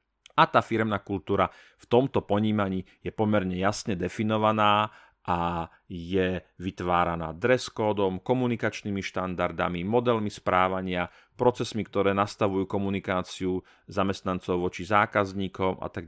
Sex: male